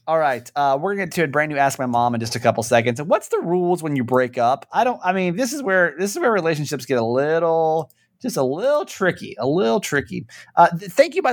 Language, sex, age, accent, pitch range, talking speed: English, male, 30-49, American, 125-185 Hz, 270 wpm